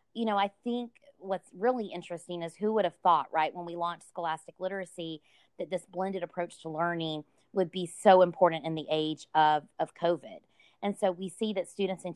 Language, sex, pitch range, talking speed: English, female, 160-185 Hz, 200 wpm